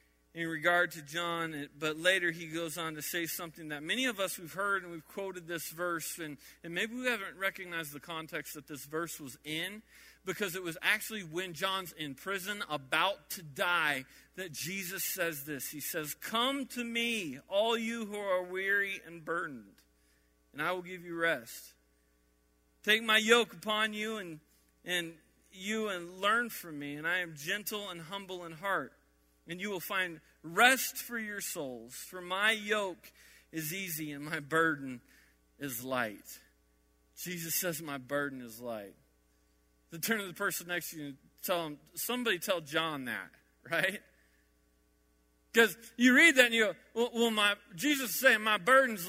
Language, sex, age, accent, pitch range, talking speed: English, male, 40-59, American, 150-215 Hz, 175 wpm